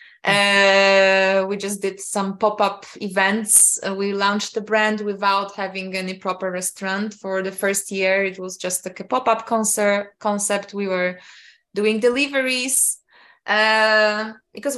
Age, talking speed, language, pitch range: 20-39, 140 wpm, English, 190-220 Hz